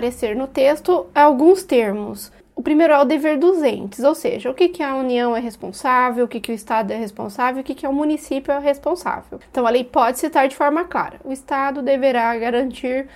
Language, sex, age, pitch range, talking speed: Portuguese, female, 20-39, 245-310 Hz, 220 wpm